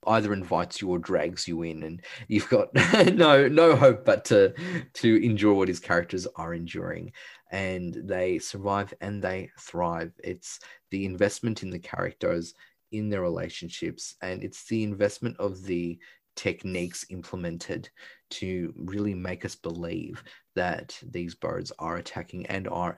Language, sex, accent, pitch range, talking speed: English, male, Australian, 85-105 Hz, 150 wpm